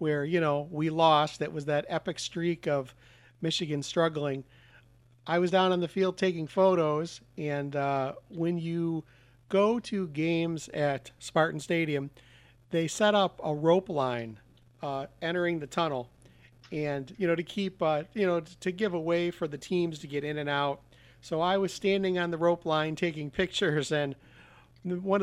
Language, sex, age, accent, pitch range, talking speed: English, male, 40-59, American, 145-180 Hz, 170 wpm